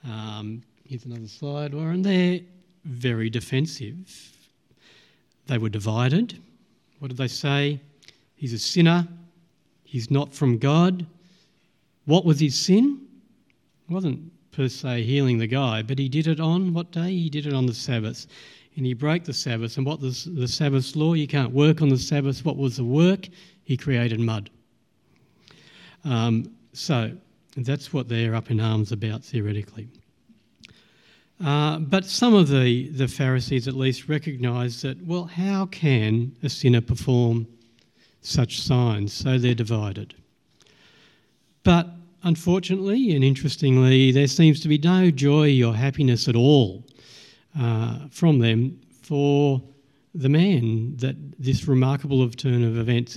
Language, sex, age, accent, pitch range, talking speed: English, male, 50-69, Australian, 120-160 Hz, 145 wpm